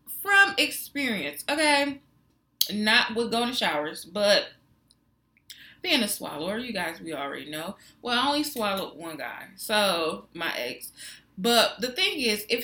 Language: English